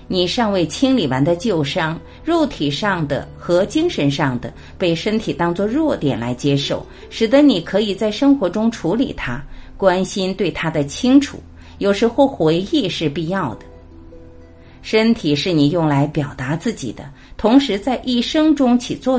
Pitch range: 135-215 Hz